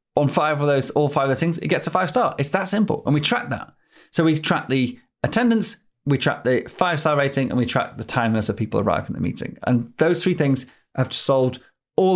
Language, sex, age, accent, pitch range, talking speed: English, male, 30-49, British, 125-170 Hz, 230 wpm